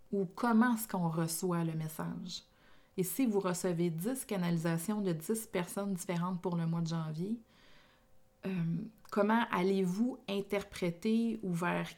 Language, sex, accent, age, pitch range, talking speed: French, female, Canadian, 30-49, 170-215 Hz, 140 wpm